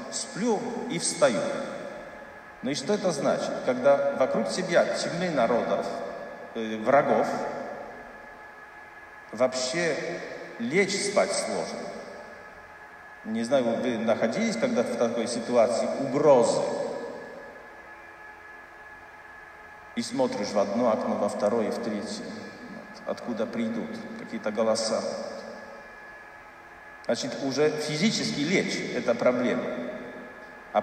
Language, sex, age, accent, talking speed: Russian, male, 50-69, native, 95 wpm